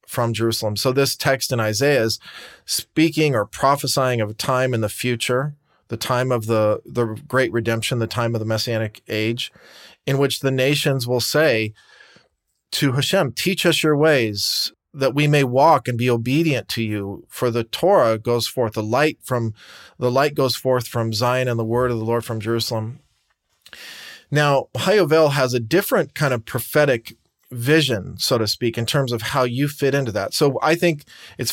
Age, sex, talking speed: 40-59, male, 185 wpm